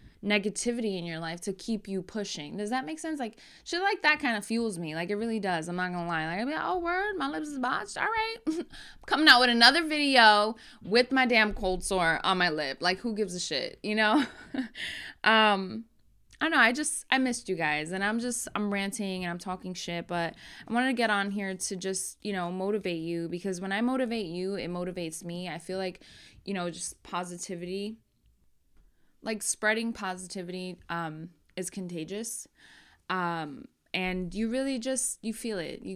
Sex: female